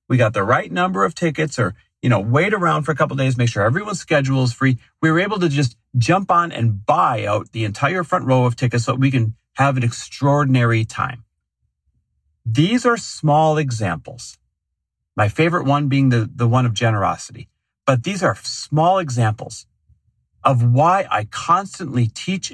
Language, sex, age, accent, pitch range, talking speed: English, male, 40-59, American, 115-170 Hz, 185 wpm